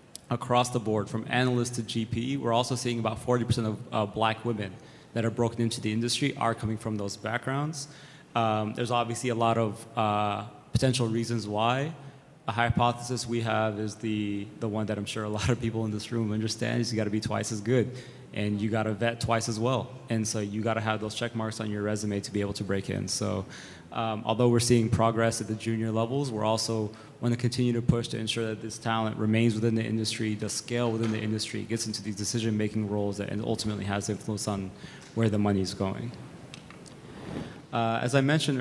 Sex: male